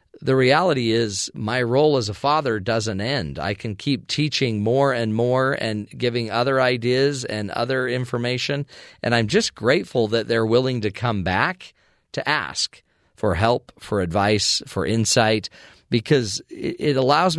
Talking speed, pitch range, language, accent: 155 wpm, 115-145 Hz, English, American